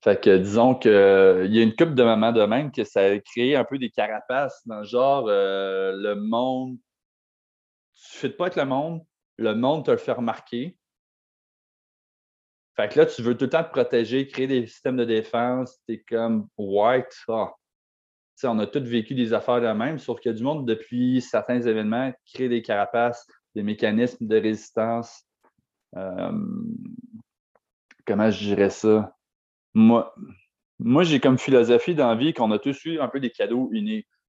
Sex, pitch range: male, 110-135 Hz